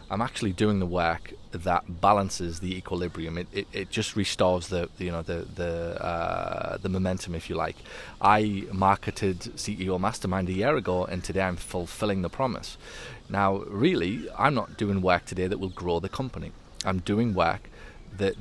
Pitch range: 90-100 Hz